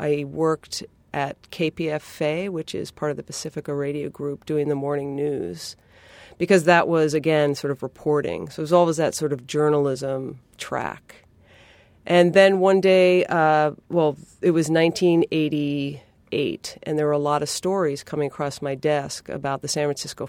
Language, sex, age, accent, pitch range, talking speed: English, female, 40-59, American, 145-165 Hz, 165 wpm